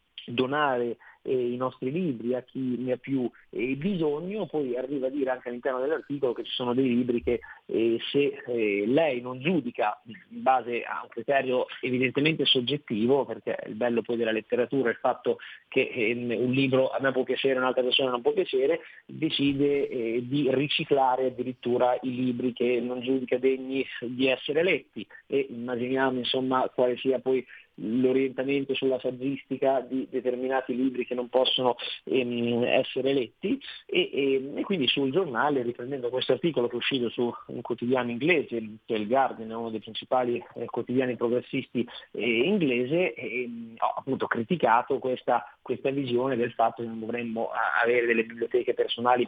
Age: 30-49